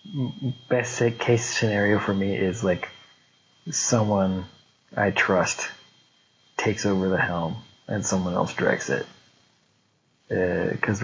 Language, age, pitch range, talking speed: English, 20-39, 100-120 Hz, 115 wpm